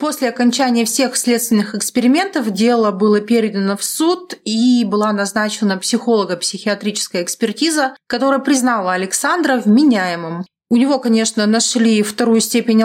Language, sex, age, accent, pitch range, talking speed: Russian, female, 30-49, native, 210-265 Hz, 115 wpm